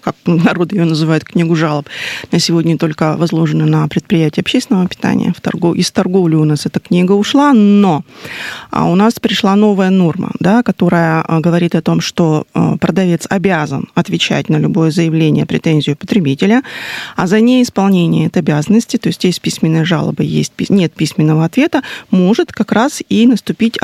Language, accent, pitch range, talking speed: Russian, native, 170-225 Hz, 150 wpm